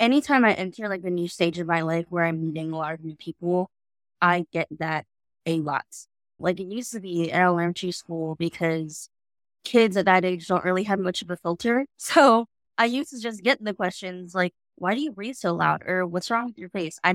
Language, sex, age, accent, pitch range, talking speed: English, female, 20-39, American, 170-205 Hz, 230 wpm